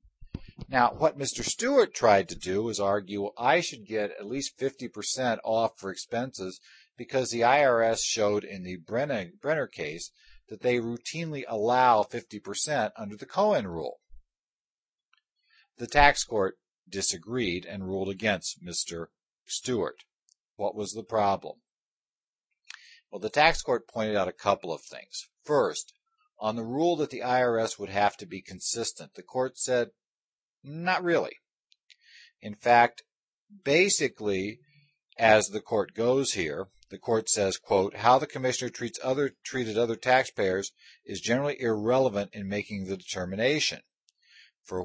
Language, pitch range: English, 100-130 Hz